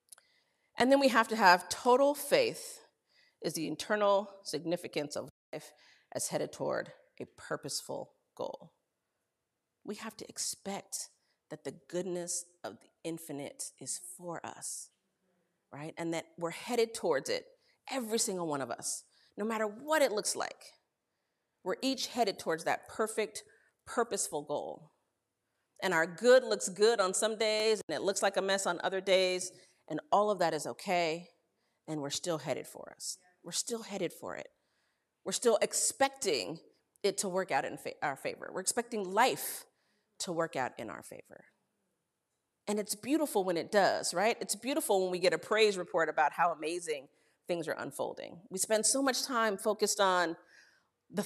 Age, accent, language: 40-59, American, English